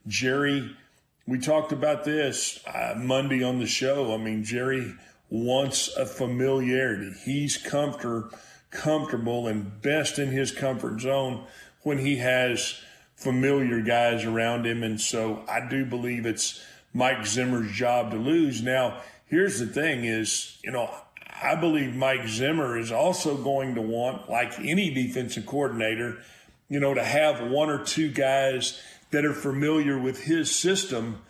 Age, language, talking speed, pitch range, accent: 40-59, English, 145 wpm, 120-145 Hz, American